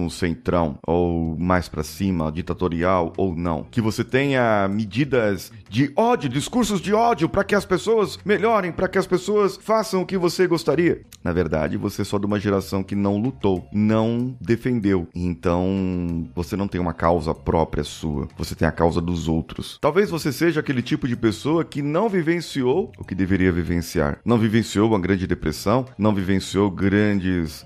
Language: Portuguese